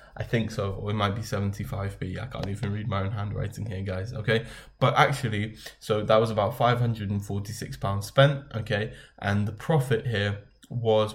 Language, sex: English, male